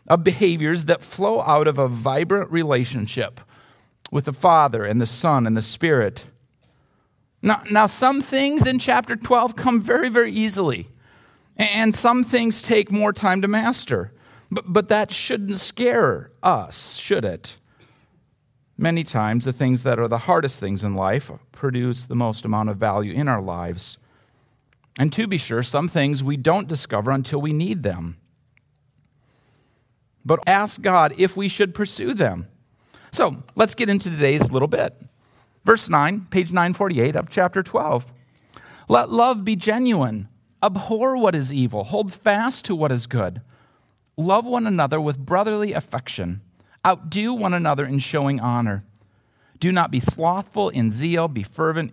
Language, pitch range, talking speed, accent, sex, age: English, 125-205 Hz, 155 wpm, American, male, 40-59